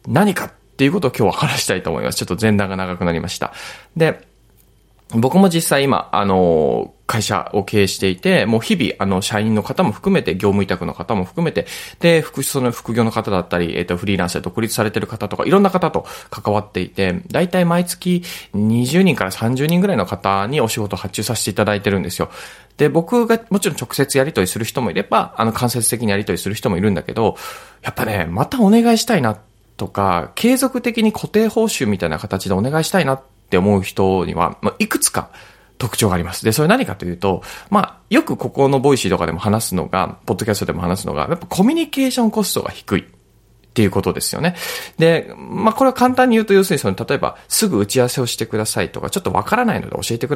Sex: male